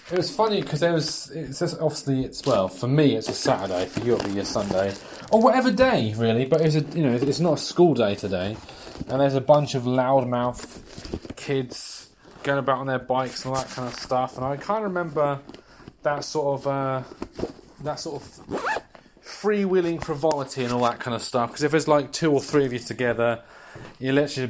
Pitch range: 125-160 Hz